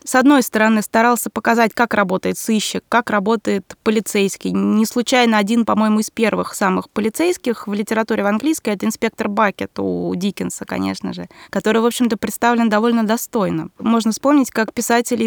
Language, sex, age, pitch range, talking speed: Russian, female, 20-39, 210-245 Hz, 155 wpm